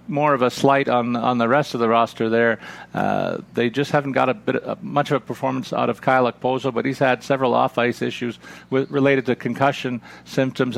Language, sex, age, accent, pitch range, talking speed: English, male, 50-69, American, 115-145 Hz, 215 wpm